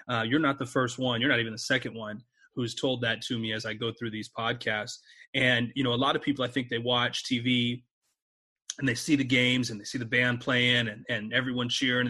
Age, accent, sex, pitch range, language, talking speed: 30-49, American, male, 115-135 Hz, English, 250 wpm